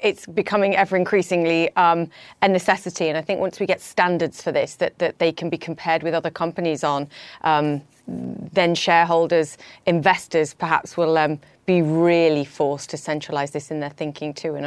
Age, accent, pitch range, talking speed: 30-49, British, 155-195 Hz, 180 wpm